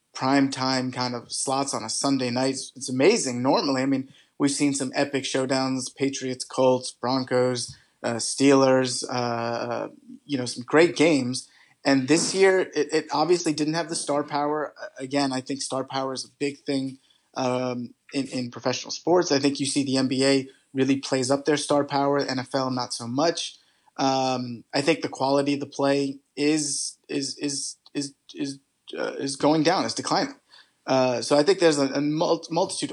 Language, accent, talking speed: English, American, 180 wpm